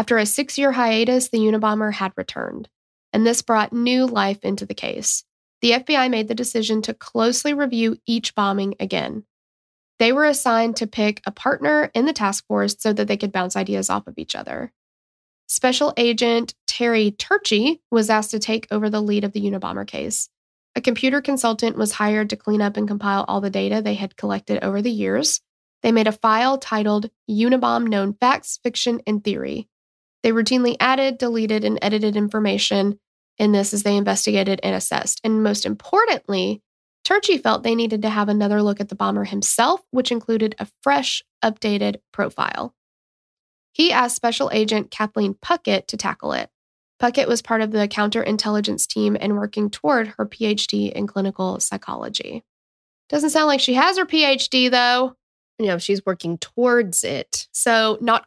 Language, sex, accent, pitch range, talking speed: English, female, American, 205-245 Hz, 175 wpm